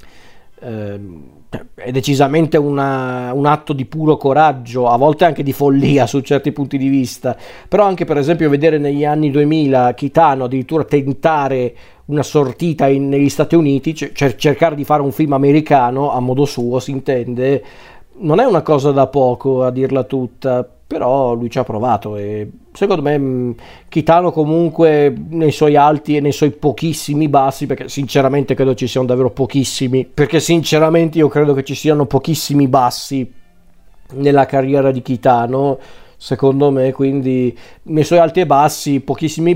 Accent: native